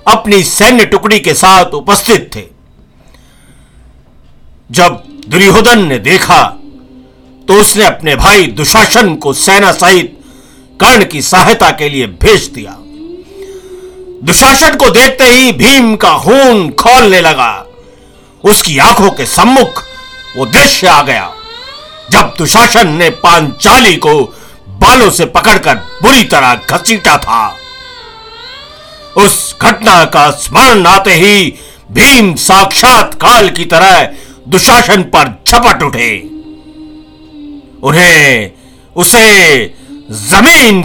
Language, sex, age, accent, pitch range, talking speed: Hindi, male, 50-69, native, 180-290 Hz, 105 wpm